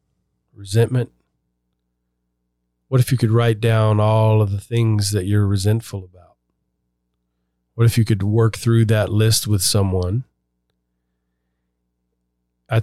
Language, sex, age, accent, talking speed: English, male, 40-59, American, 120 wpm